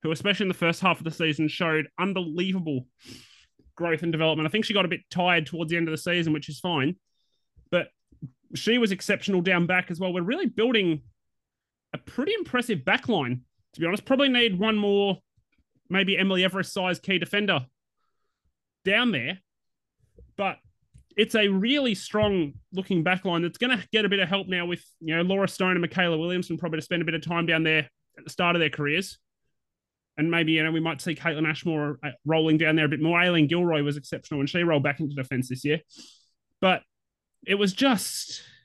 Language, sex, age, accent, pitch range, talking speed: English, male, 20-39, Australian, 155-190 Hz, 200 wpm